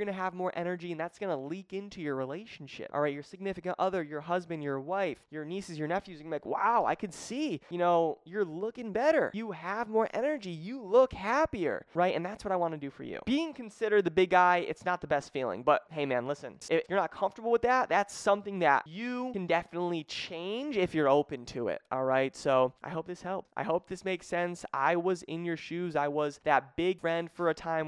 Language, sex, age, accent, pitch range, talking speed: English, male, 20-39, American, 145-195 Hz, 235 wpm